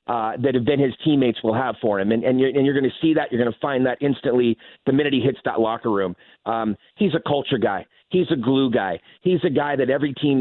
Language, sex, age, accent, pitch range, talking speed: English, male, 30-49, American, 125-150 Hz, 270 wpm